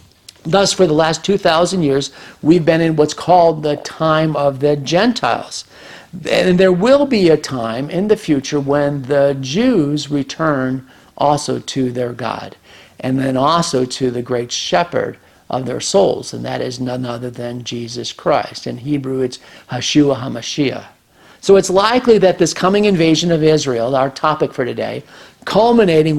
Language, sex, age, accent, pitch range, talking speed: English, male, 50-69, American, 135-170 Hz, 160 wpm